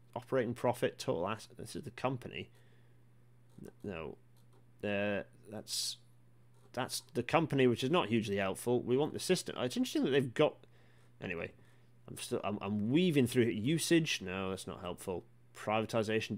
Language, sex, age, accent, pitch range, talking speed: English, male, 30-49, British, 105-140 Hz, 150 wpm